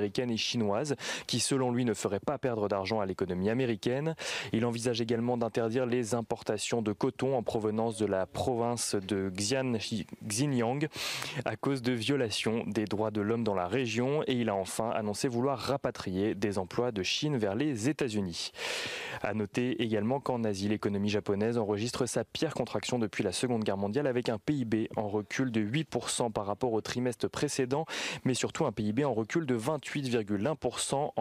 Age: 20-39